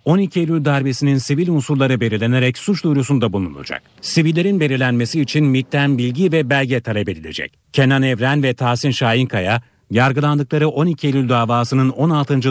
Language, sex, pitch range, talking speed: Turkish, male, 120-145 Hz, 135 wpm